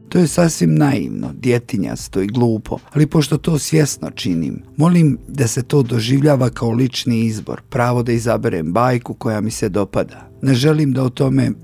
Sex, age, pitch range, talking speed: male, 50-69, 110-135 Hz, 170 wpm